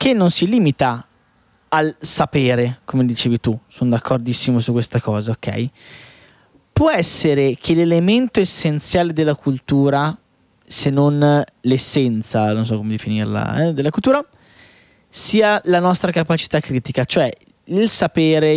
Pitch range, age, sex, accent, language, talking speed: 125-165 Hz, 20-39, male, native, Italian, 130 wpm